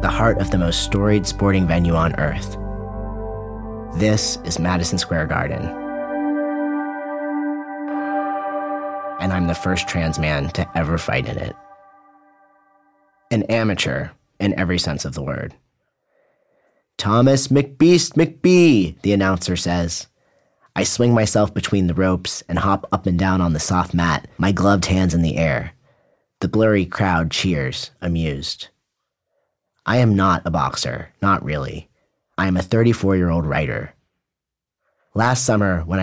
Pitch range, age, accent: 85-100 Hz, 30-49, American